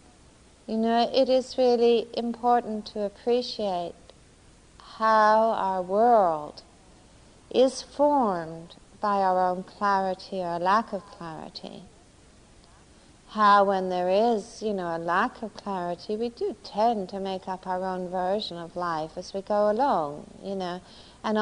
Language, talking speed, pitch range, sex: English, 135 wpm, 185-225 Hz, female